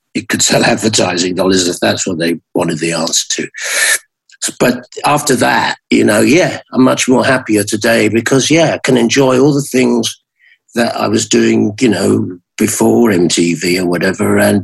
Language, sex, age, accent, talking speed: English, male, 50-69, British, 175 wpm